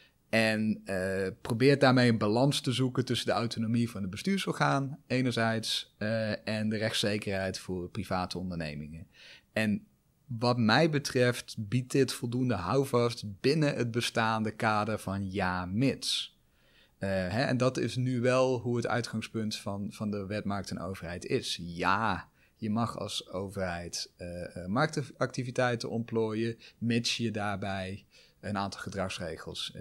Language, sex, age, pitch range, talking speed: Dutch, male, 30-49, 105-130 Hz, 135 wpm